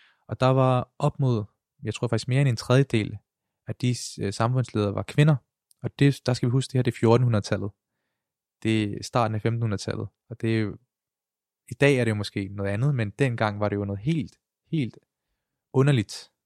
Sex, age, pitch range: male, 20-39, 105-125 Hz